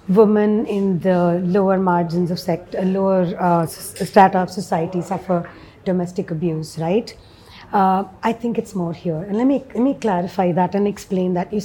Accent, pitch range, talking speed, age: Indian, 185-245 Hz, 175 wpm, 30-49